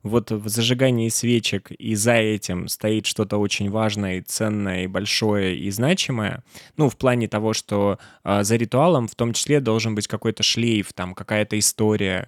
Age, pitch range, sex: 20-39, 100-120 Hz, male